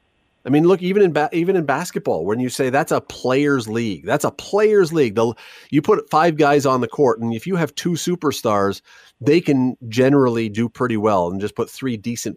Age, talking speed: 30-49, 220 wpm